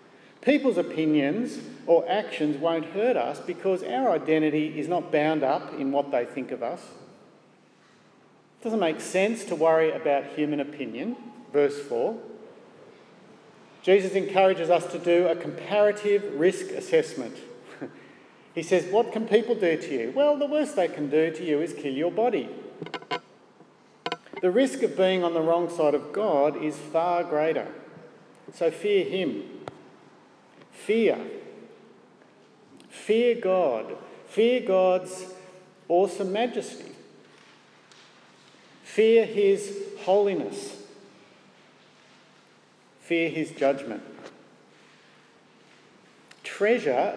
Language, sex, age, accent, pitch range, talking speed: English, male, 50-69, Australian, 155-220 Hz, 115 wpm